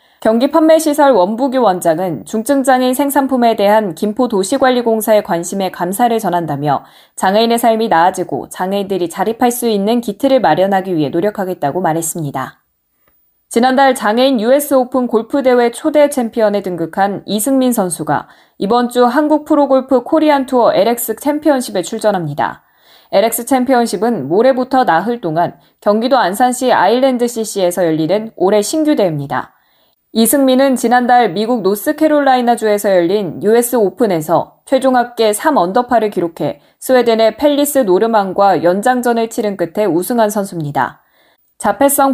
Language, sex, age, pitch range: Korean, female, 20-39, 195-260 Hz